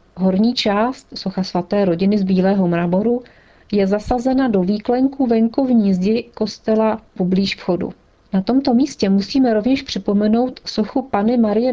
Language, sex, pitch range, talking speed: Czech, female, 190-225 Hz, 135 wpm